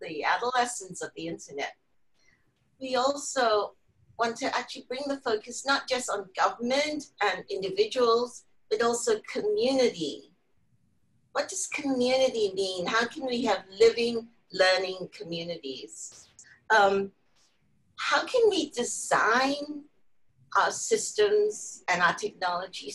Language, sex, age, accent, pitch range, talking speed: English, female, 50-69, American, 200-320 Hz, 110 wpm